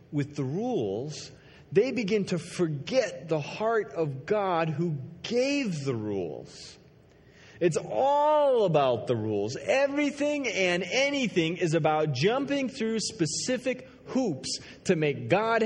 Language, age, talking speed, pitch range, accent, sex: English, 30-49, 125 wpm, 150-215 Hz, American, male